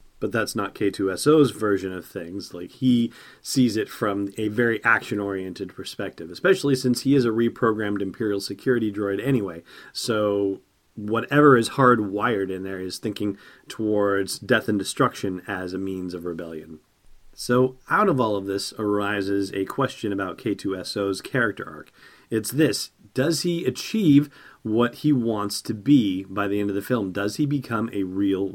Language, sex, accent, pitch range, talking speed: English, male, American, 100-130 Hz, 160 wpm